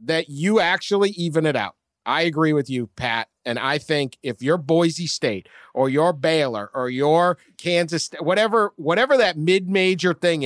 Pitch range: 150-205 Hz